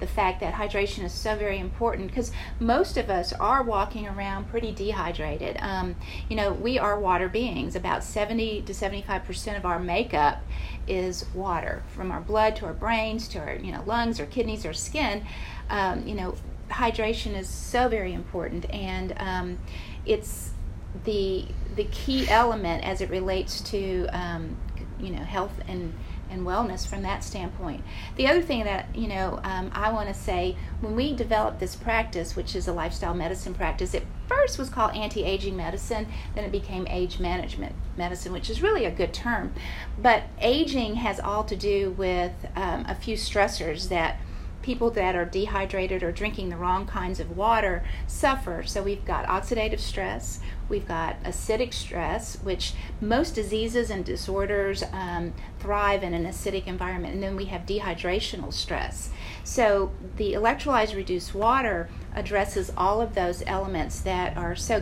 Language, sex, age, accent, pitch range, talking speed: English, female, 40-59, American, 180-220 Hz, 170 wpm